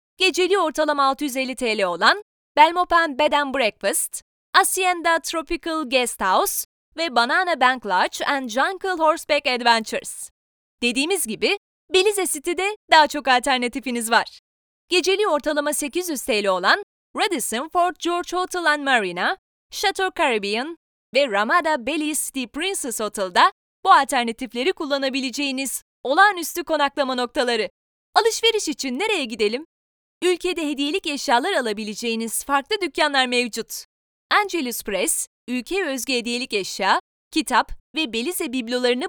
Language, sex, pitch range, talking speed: Turkish, female, 255-360 Hz, 115 wpm